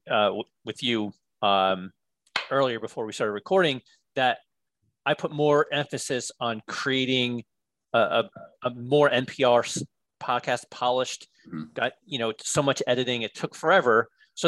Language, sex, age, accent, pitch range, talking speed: English, male, 30-49, American, 115-150 Hz, 135 wpm